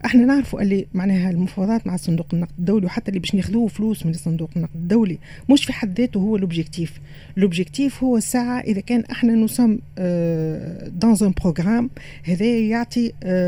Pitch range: 175-225 Hz